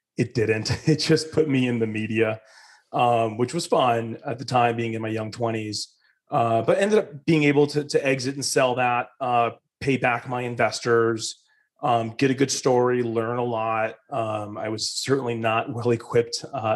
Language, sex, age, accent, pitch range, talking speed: English, male, 30-49, American, 115-130 Hz, 185 wpm